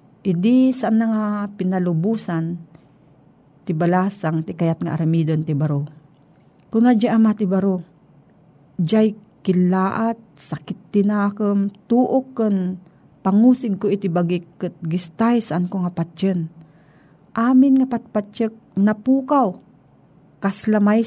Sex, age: female, 40-59